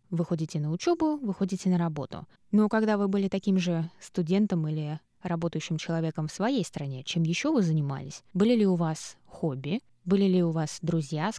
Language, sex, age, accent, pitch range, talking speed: Russian, female, 20-39, native, 170-210 Hz, 180 wpm